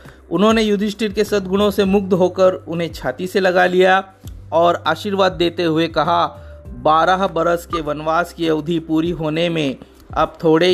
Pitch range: 145-175 Hz